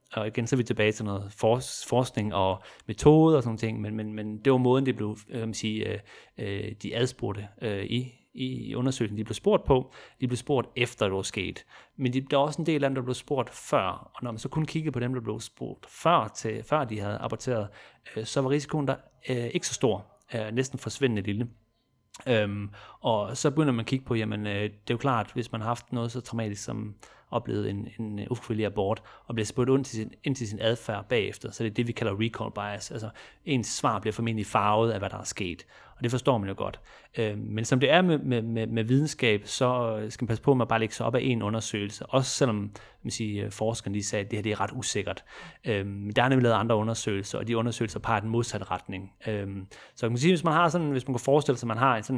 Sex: male